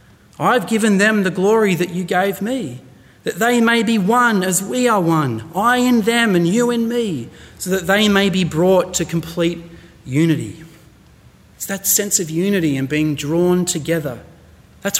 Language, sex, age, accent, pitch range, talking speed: English, male, 30-49, Australian, 150-205 Hz, 175 wpm